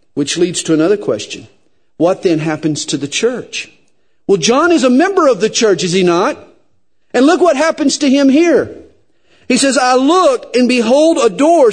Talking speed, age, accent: 190 wpm, 50-69, American